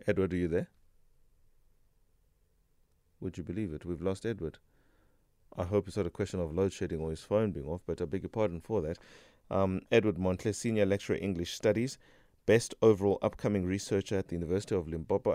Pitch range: 85-100 Hz